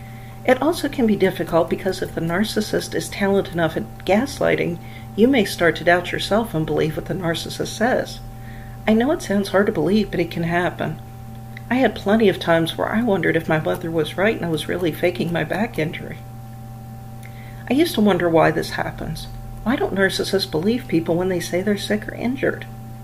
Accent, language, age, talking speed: American, English, 50-69, 200 wpm